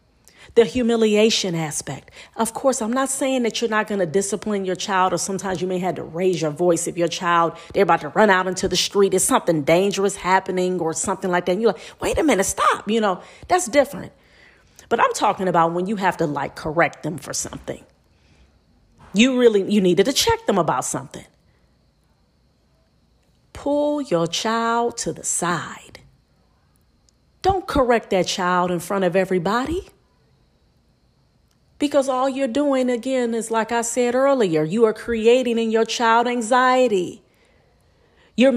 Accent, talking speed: American, 170 wpm